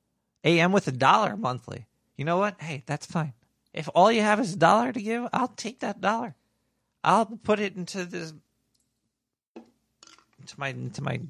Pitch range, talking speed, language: 140-205 Hz, 180 wpm, English